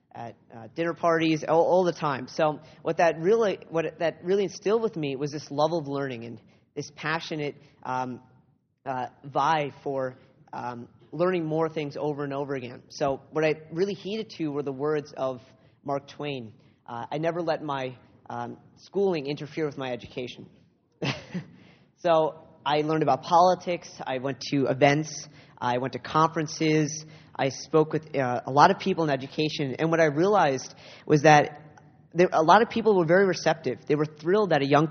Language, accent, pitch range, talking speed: English, American, 130-160 Hz, 175 wpm